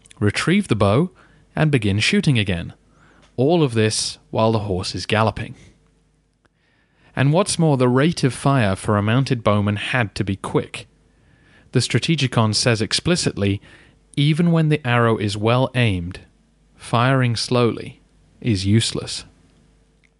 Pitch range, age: 105-135 Hz, 30-49